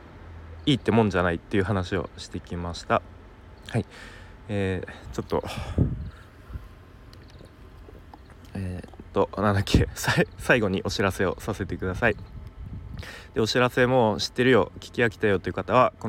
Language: Japanese